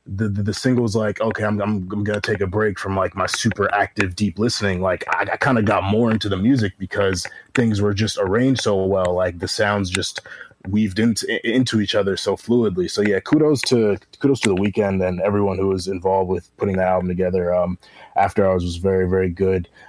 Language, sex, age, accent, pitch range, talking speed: English, male, 20-39, American, 95-115 Hz, 225 wpm